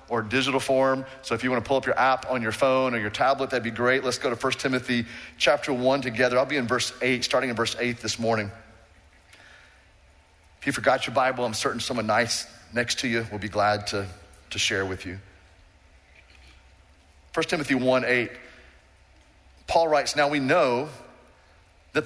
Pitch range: 100-145 Hz